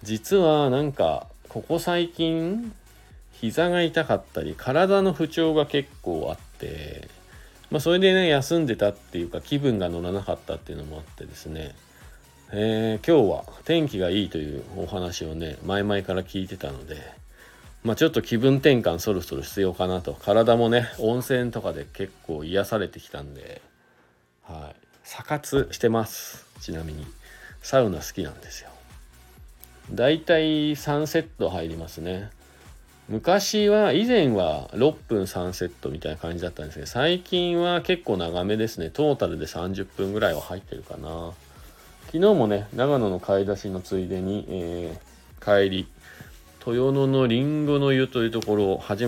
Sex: male